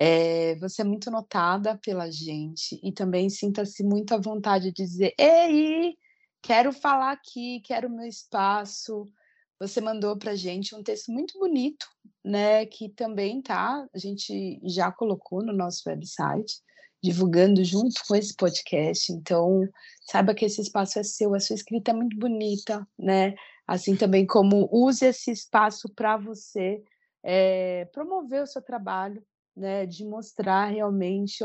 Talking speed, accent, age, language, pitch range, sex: 155 wpm, Brazilian, 20-39, Portuguese, 180-215 Hz, female